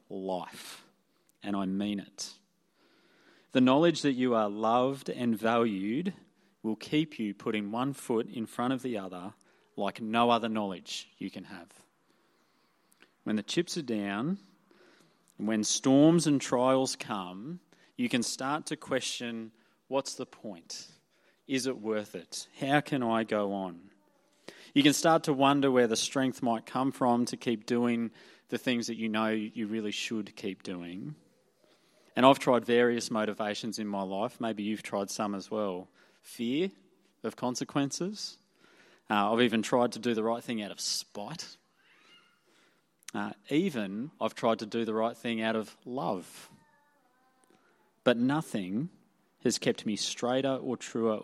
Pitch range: 105-130 Hz